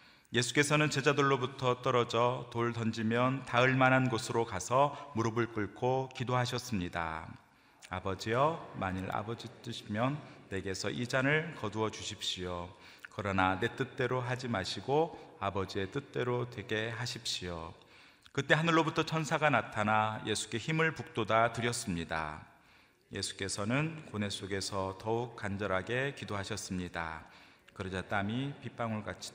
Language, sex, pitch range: Korean, male, 100-130 Hz